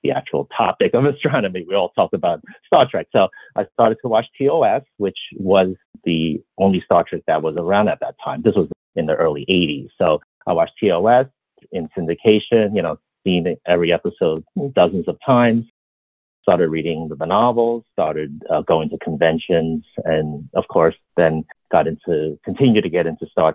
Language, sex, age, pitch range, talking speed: English, male, 50-69, 80-115 Hz, 175 wpm